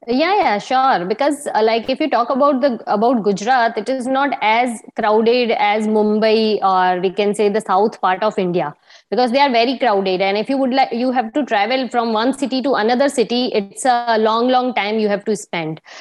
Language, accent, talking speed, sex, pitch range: English, Indian, 215 wpm, female, 205-250 Hz